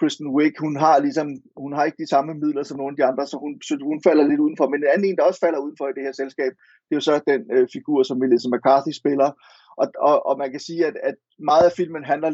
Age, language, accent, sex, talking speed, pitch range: 30-49, Danish, native, male, 280 wpm, 135-195 Hz